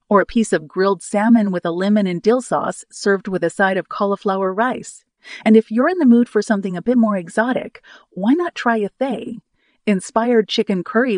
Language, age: English, 40-59